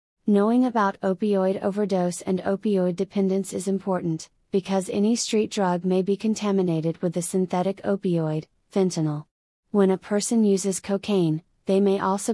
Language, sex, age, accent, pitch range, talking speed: English, female, 30-49, American, 175-195 Hz, 140 wpm